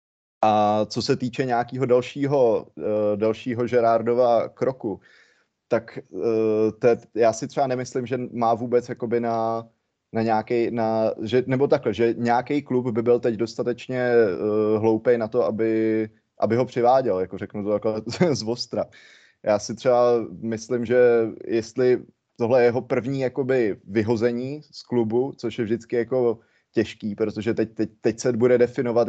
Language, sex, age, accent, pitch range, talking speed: Czech, male, 20-39, native, 115-125 Hz, 150 wpm